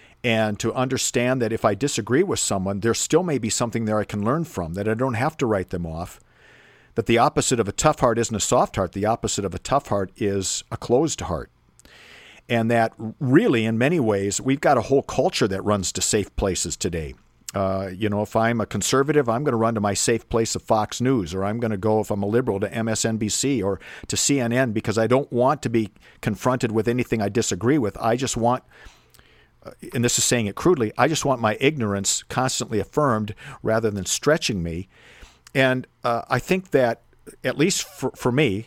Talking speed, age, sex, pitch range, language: 215 wpm, 50-69, male, 105-130 Hz, English